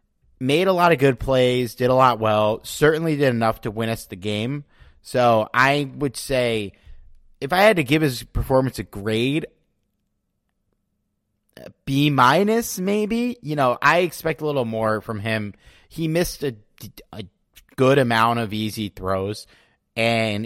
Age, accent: 30-49, American